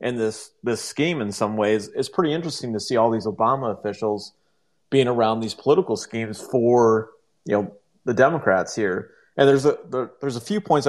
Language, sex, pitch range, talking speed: English, male, 110-145 Hz, 195 wpm